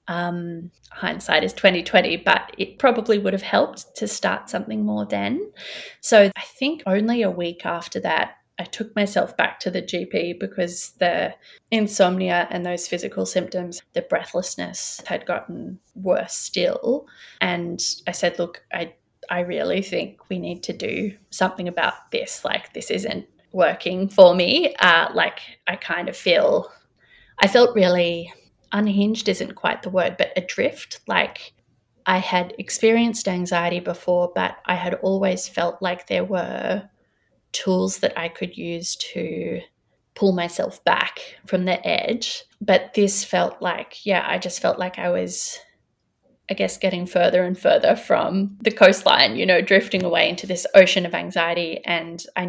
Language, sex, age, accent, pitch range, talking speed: English, female, 20-39, Australian, 175-205 Hz, 155 wpm